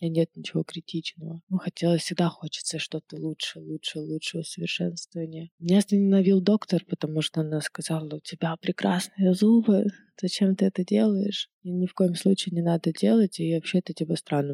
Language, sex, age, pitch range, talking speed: Russian, female, 20-39, 160-185 Hz, 160 wpm